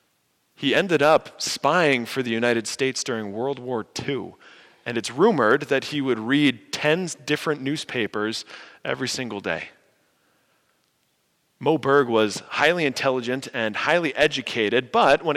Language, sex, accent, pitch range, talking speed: English, male, American, 115-145 Hz, 135 wpm